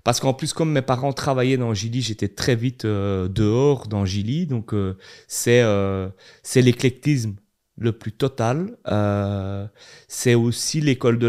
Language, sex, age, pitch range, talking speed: French, male, 30-49, 110-140 Hz, 160 wpm